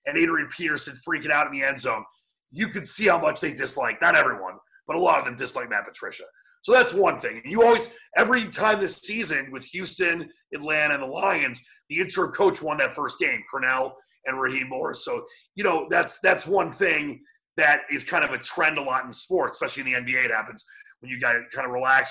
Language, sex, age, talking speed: English, male, 30-49, 225 wpm